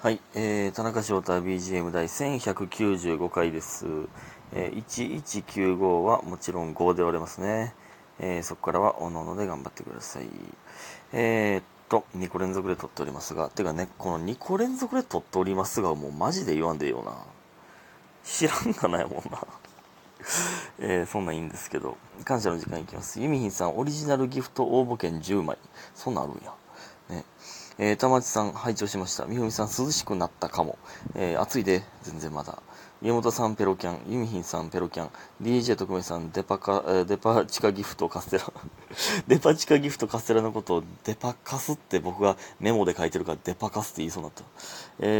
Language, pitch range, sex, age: Japanese, 90-115 Hz, male, 30-49